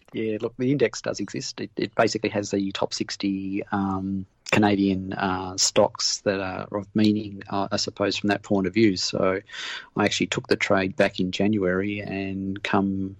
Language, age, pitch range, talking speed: English, 40-59, 95-105 Hz, 180 wpm